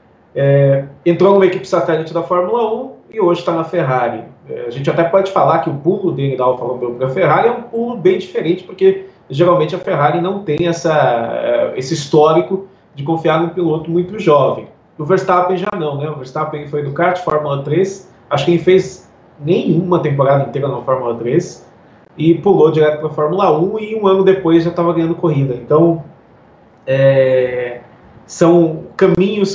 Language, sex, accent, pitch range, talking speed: Portuguese, male, Brazilian, 140-180 Hz, 175 wpm